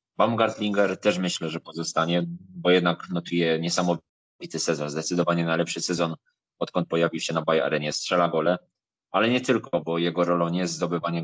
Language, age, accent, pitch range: Polish, 20-39, native, 85-95 Hz